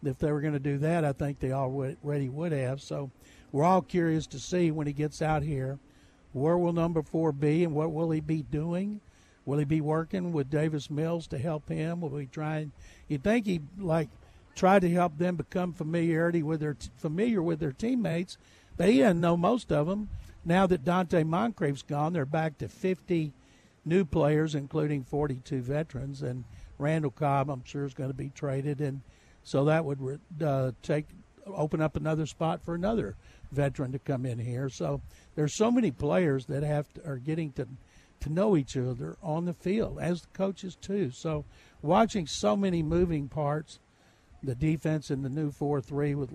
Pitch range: 140-170 Hz